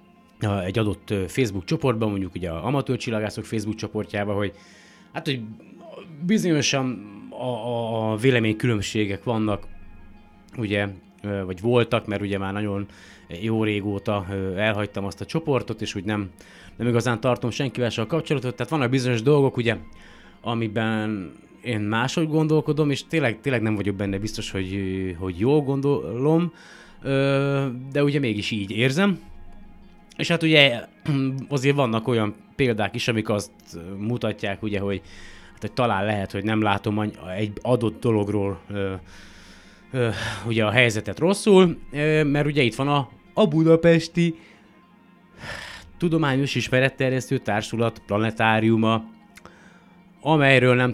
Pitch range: 105-140 Hz